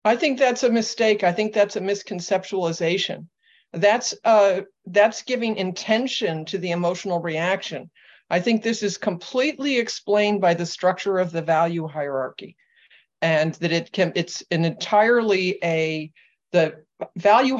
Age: 50-69